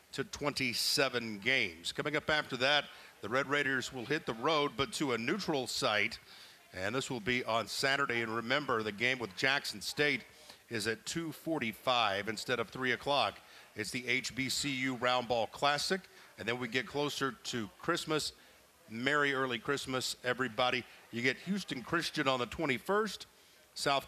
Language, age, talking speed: English, 50-69, 160 wpm